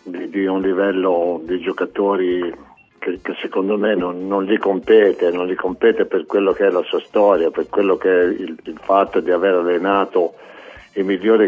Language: Italian